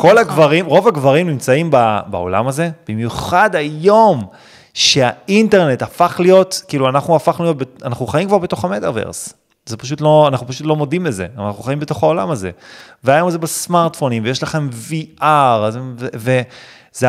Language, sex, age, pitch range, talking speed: Hebrew, male, 30-49, 120-180 Hz, 145 wpm